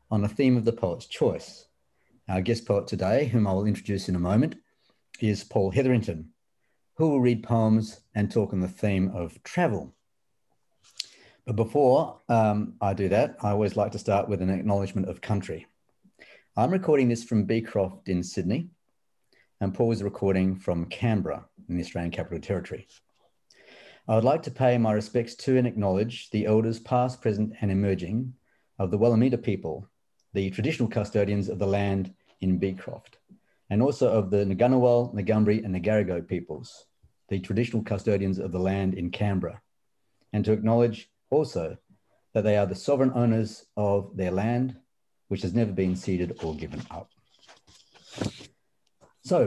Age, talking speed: 40-59, 160 wpm